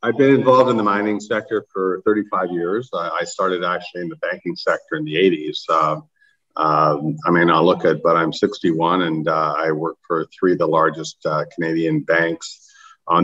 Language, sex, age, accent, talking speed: English, male, 50-69, American, 195 wpm